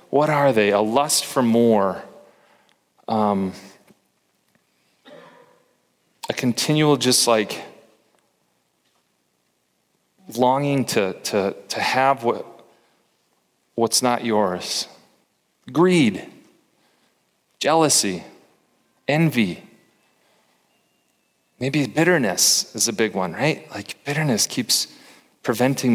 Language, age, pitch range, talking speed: English, 30-49, 105-130 Hz, 80 wpm